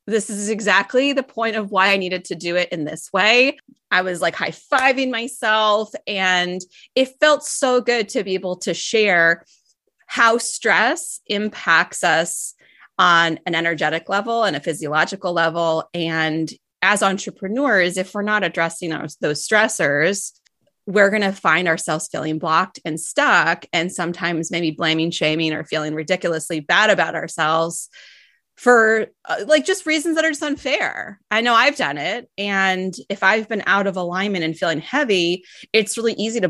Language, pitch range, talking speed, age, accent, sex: English, 175-235 Hz, 165 wpm, 30-49, American, female